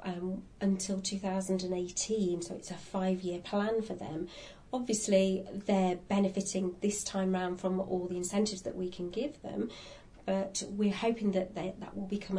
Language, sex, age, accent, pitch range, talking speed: English, female, 40-59, British, 185-200 Hz, 155 wpm